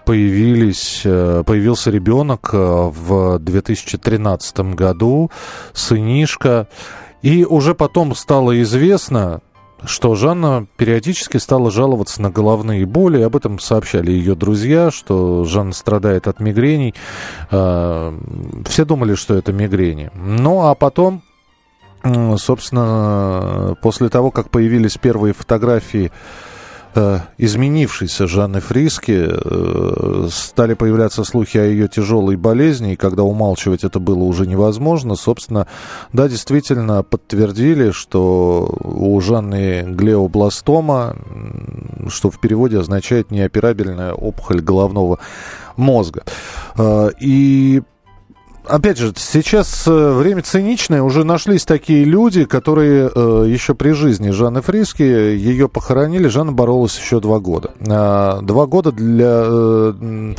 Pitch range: 100-135 Hz